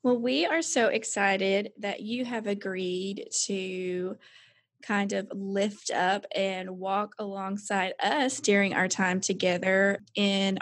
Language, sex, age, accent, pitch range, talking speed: English, female, 20-39, American, 185-215 Hz, 130 wpm